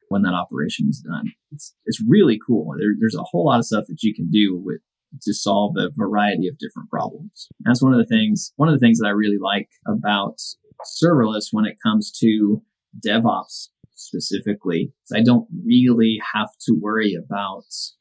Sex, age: male, 20-39